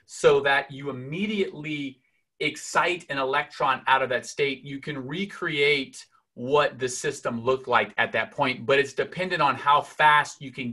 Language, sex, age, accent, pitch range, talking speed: English, male, 30-49, American, 125-155 Hz, 170 wpm